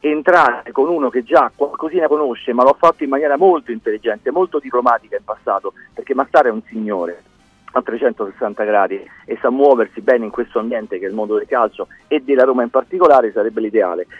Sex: male